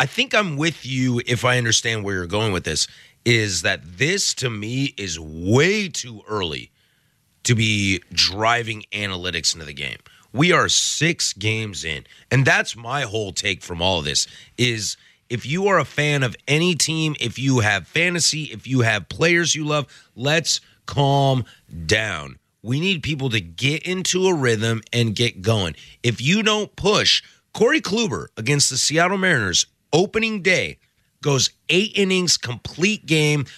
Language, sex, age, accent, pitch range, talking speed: English, male, 30-49, American, 110-165 Hz, 165 wpm